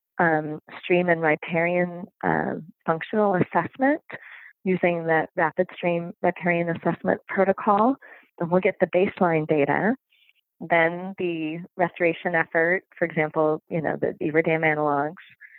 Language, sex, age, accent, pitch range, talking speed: English, female, 20-39, American, 165-190 Hz, 125 wpm